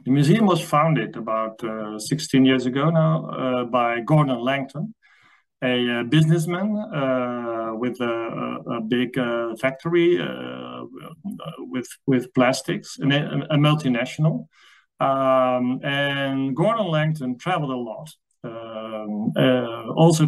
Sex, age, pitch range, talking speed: male, 40-59, 120-155 Hz, 125 wpm